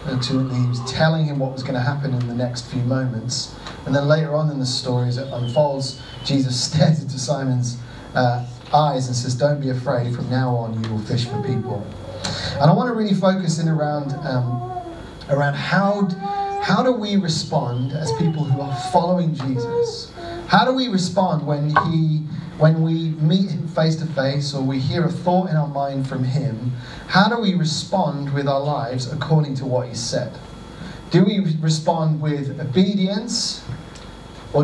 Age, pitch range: 30-49, 125-160 Hz